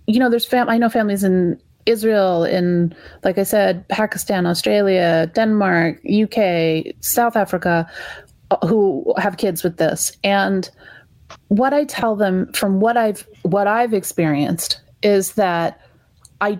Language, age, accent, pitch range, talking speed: English, 30-49, American, 165-205 Hz, 135 wpm